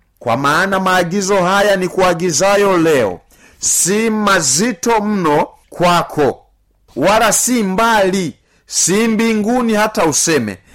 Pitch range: 160-220 Hz